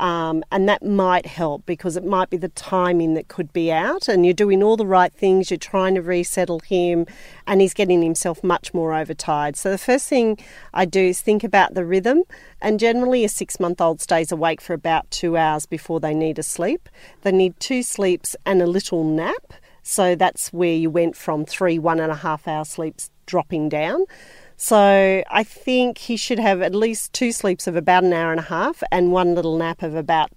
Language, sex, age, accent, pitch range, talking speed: English, female, 40-59, Australian, 165-205 Hz, 210 wpm